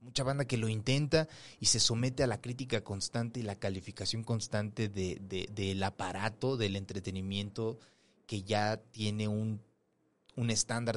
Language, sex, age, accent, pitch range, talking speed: Spanish, male, 30-49, Mexican, 100-125 Hz, 155 wpm